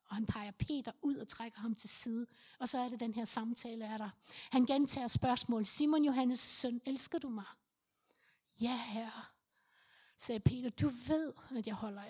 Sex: female